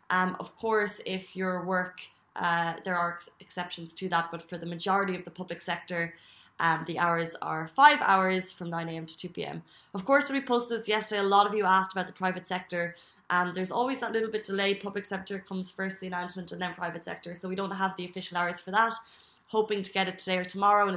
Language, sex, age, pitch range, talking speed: Arabic, female, 20-39, 180-210 Hz, 235 wpm